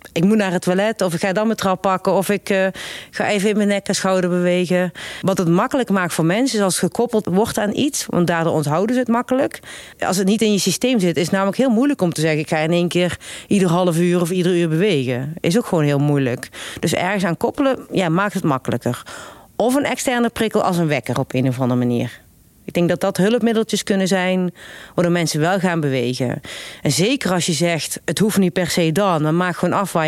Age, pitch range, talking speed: 40-59, 165-210 Hz, 245 wpm